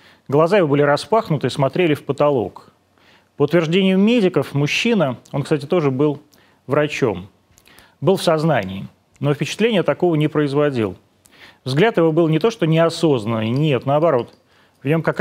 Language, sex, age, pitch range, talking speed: Russian, male, 30-49, 125-170 Hz, 145 wpm